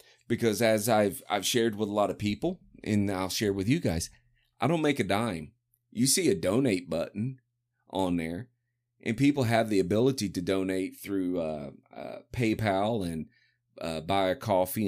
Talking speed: 180 wpm